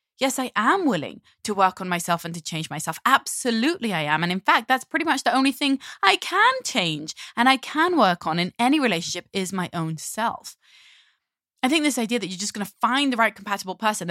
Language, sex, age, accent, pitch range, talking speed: English, female, 20-39, British, 185-275 Hz, 225 wpm